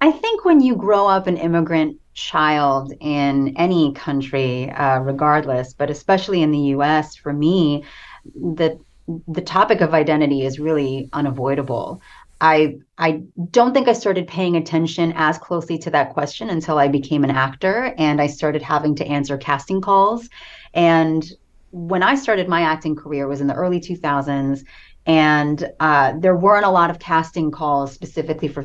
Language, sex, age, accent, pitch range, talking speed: English, female, 30-49, American, 145-170 Hz, 165 wpm